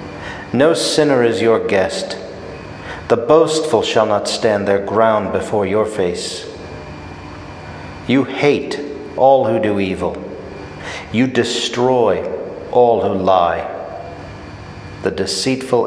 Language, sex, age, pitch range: English, male, 50-69, 95-115 Hz